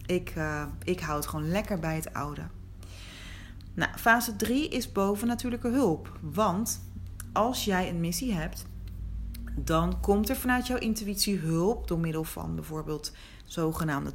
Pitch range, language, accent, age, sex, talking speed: 160-210 Hz, Dutch, Dutch, 40-59, female, 145 wpm